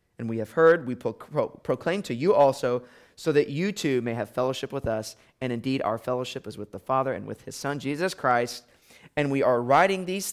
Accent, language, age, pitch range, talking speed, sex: American, English, 30-49, 130-215 Hz, 215 wpm, male